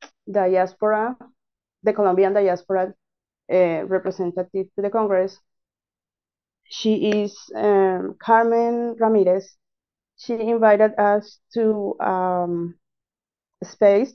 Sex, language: female, English